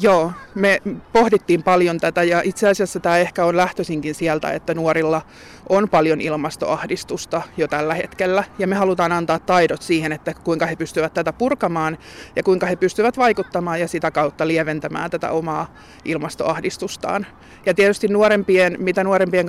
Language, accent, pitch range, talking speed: Finnish, native, 160-190 Hz, 155 wpm